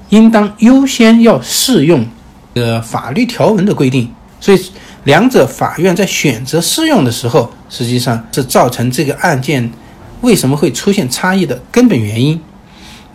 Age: 60-79